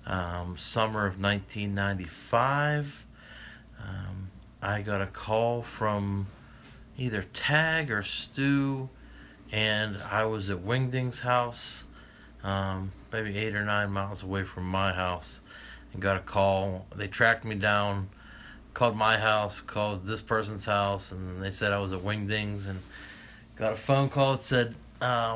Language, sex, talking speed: English, male, 140 wpm